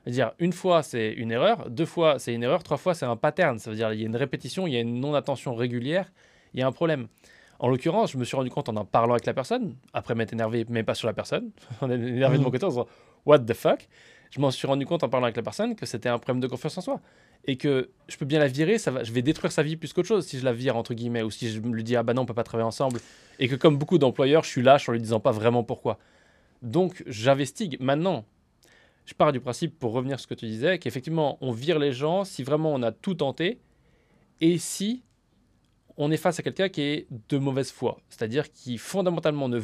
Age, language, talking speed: 20-39, French, 270 wpm